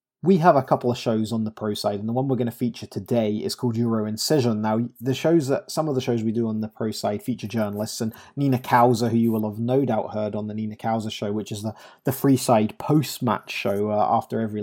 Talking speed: 265 wpm